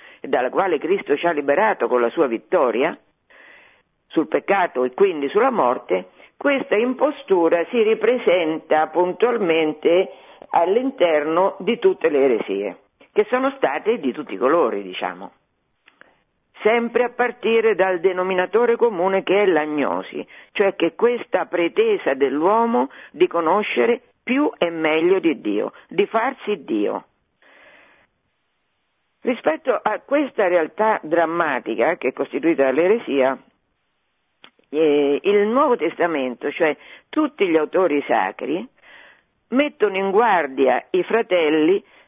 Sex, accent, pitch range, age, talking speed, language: female, native, 170-280 Hz, 50-69, 115 wpm, Italian